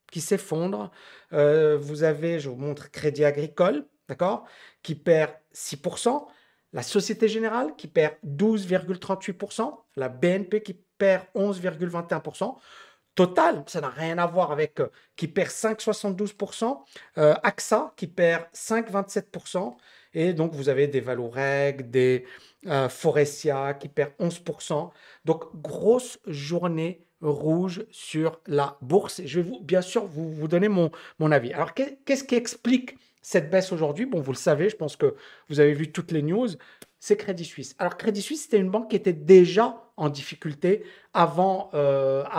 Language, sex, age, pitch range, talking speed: French, male, 50-69, 150-200 Hz, 155 wpm